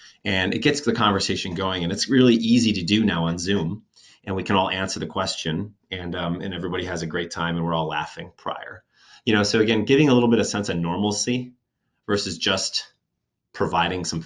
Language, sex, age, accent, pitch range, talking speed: English, male, 30-49, American, 90-105 Hz, 215 wpm